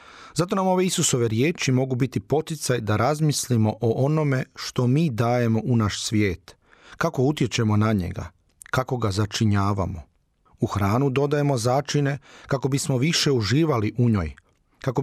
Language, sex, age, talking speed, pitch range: Croatian, male, 40-59, 145 wpm, 105-135 Hz